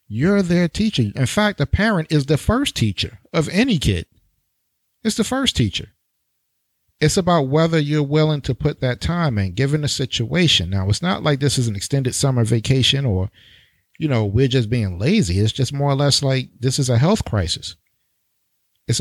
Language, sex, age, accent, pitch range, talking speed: English, male, 50-69, American, 110-140 Hz, 190 wpm